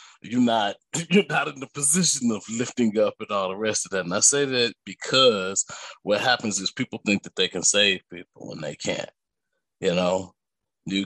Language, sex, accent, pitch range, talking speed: English, male, American, 105-165 Hz, 200 wpm